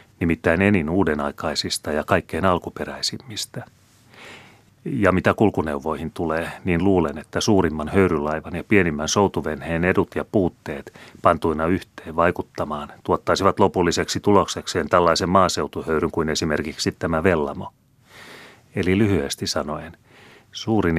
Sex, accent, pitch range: male, native, 80-100 Hz